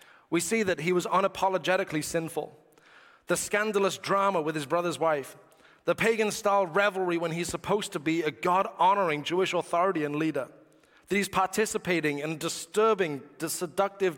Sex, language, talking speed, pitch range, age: male, English, 150 wpm, 175-215 Hz, 30-49